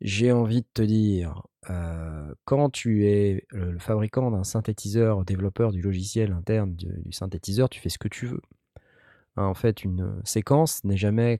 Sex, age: male, 20-39